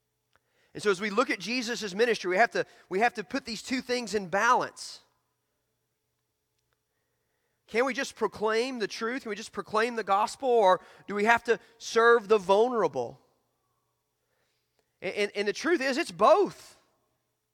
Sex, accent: male, American